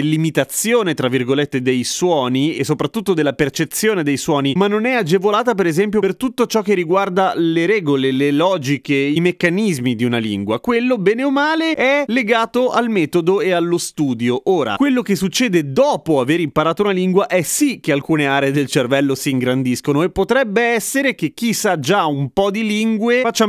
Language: Italian